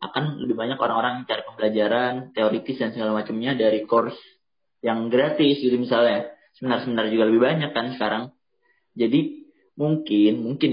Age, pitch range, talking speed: 20-39, 115-150 Hz, 145 wpm